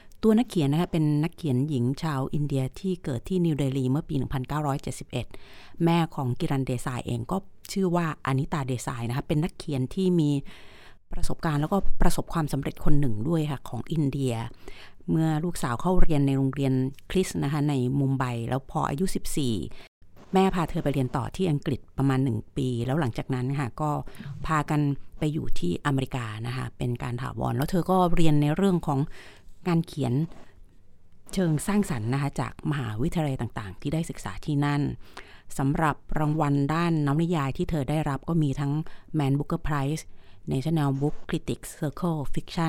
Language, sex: Thai, female